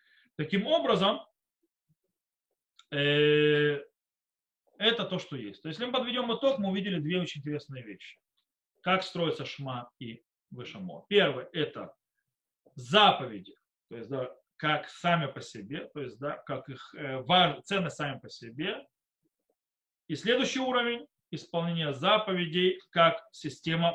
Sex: male